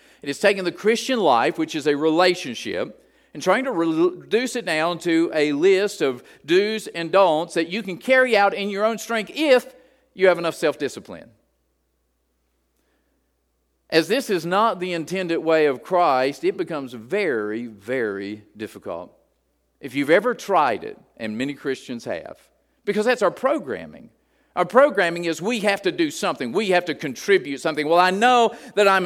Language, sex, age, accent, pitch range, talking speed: English, male, 50-69, American, 160-220 Hz, 170 wpm